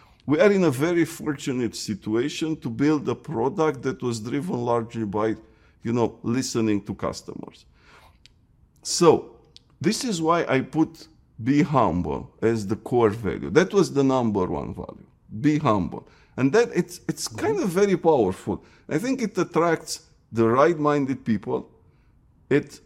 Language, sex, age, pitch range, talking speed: English, male, 50-69, 115-155 Hz, 150 wpm